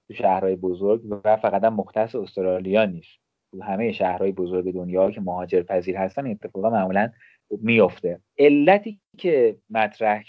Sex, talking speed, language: male, 115 wpm, Persian